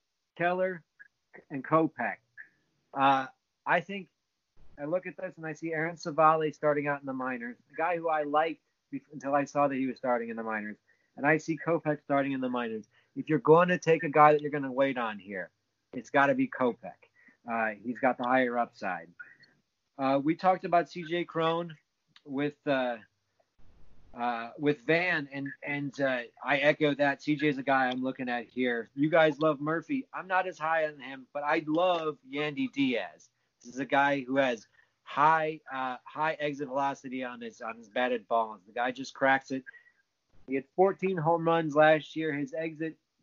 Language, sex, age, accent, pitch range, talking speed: English, male, 30-49, American, 130-160 Hz, 195 wpm